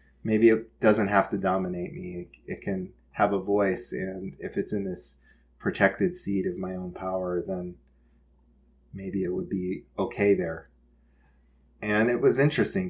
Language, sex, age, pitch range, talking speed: English, male, 20-39, 70-105 Hz, 160 wpm